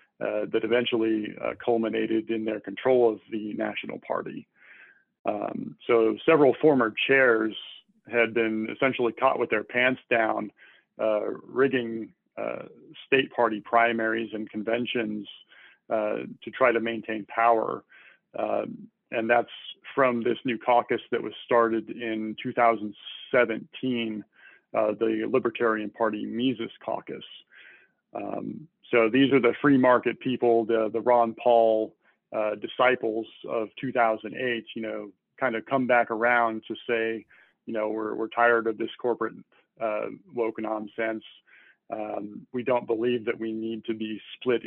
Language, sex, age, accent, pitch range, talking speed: English, male, 40-59, American, 110-120 Hz, 140 wpm